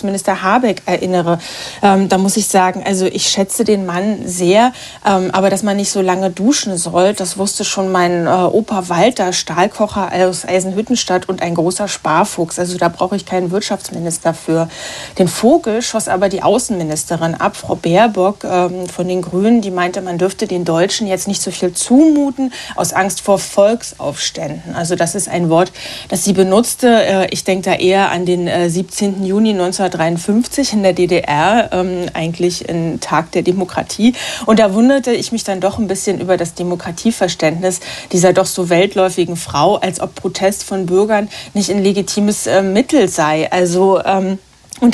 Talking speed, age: 175 wpm, 30-49